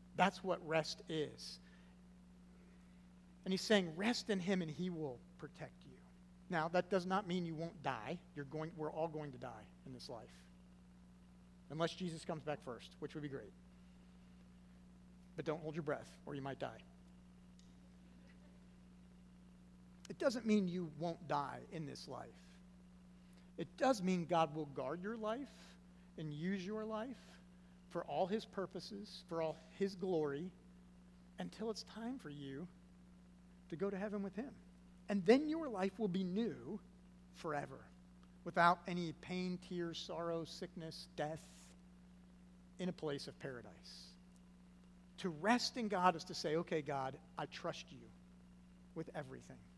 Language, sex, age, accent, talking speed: English, male, 50-69, American, 150 wpm